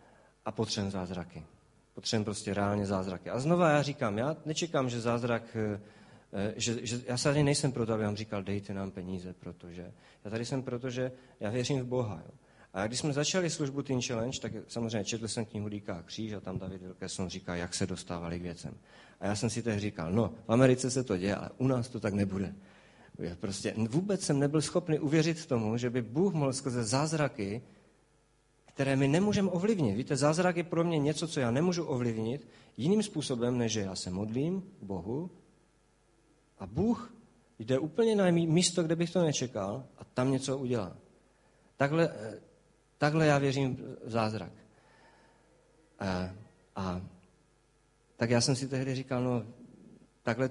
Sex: male